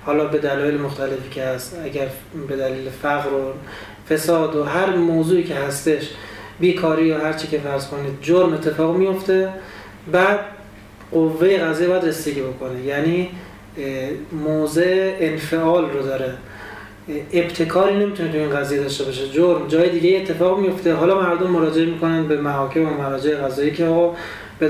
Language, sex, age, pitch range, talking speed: Persian, male, 30-49, 140-170 Hz, 145 wpm